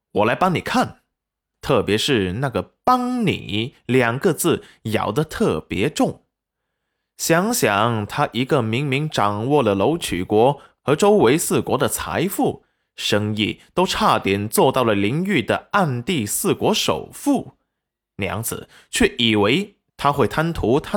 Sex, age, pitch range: male, 20-39, 105-170 Hz